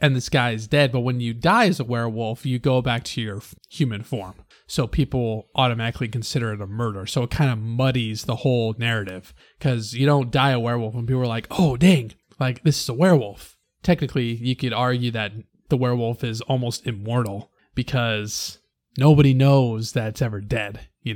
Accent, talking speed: American, 195 wpm